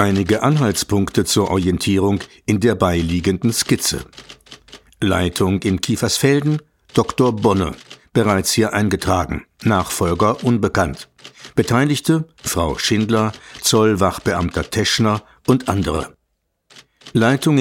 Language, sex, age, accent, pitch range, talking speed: German, male, 60-79, German, 95-115 Hz, 90 wpm